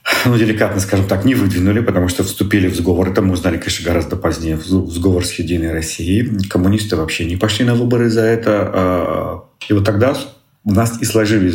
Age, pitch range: 40-59, 85-100 Hz